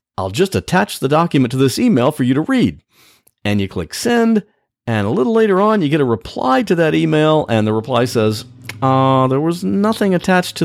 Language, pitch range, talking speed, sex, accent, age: English, 100-165 Hz, 215 wpm, male, American, 50-69